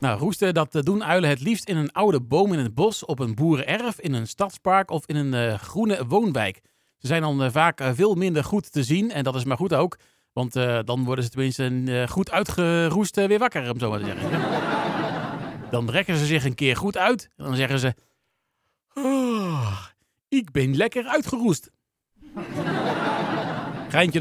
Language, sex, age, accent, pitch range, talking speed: Dutch, male, 40-59, Dutch, 130-185 Hz, 195 wpm